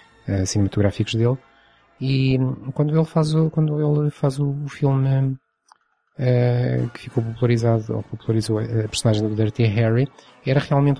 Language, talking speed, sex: Portuguese, 140 wpm, male